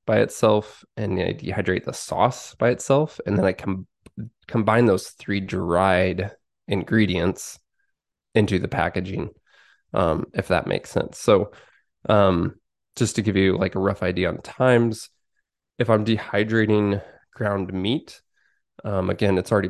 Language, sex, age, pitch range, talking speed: English, male, 20-39, 95-110 Hz, 150 wpm